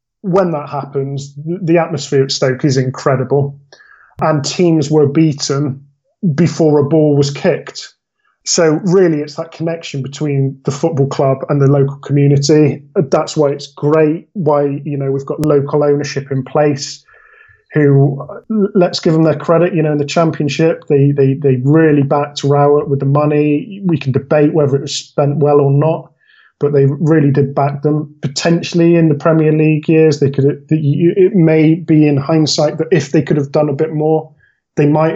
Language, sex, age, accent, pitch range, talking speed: English, male, 20-39, British, 140-160 Hz, 180 wpm